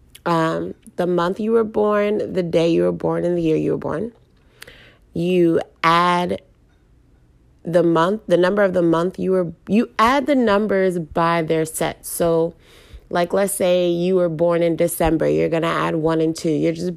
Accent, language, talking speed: American, English, 185 wpm